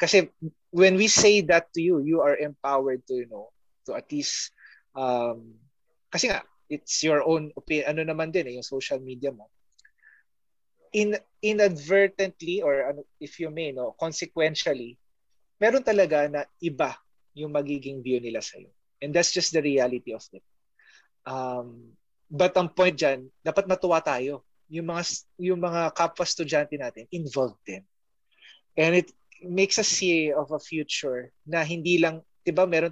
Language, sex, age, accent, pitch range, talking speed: English, male, 20-39, Filipino, 130-175 Hz, 155 wpm